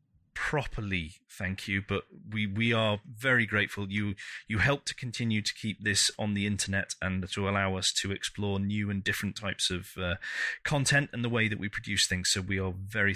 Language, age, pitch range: English, 30-49, 100-150 Hz